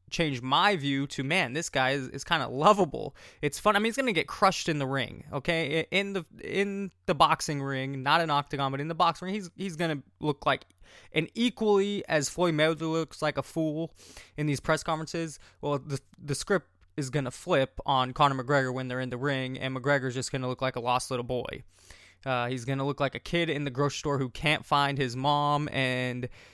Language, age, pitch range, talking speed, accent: English, 20-39, 130-155 Hz, 220 wpm, American